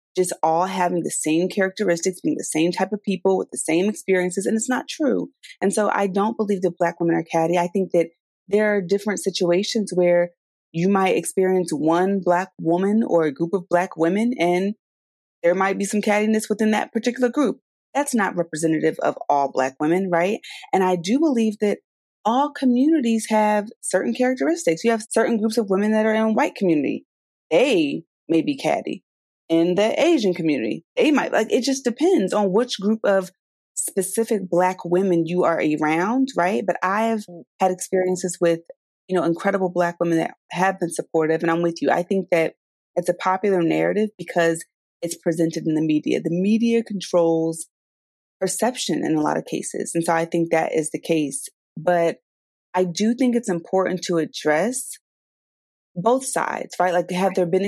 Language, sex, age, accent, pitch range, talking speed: English, female, 30-49, American, 170-215 Hz, 185 wpm